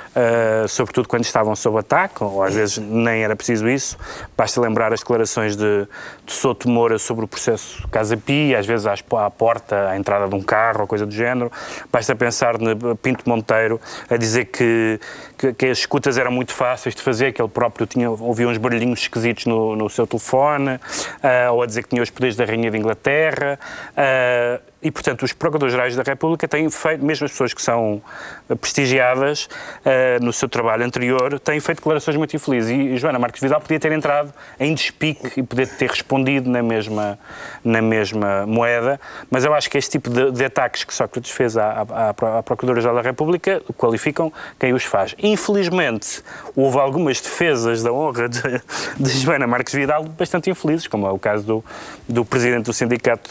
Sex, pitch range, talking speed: male, 115-135 Hz, 185 wpm